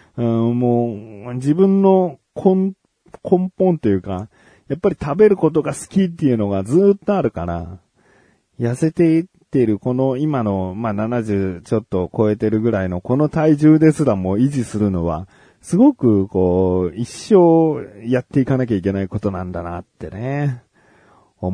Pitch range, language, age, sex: 95-140 Hz, Japanese, 40-59, male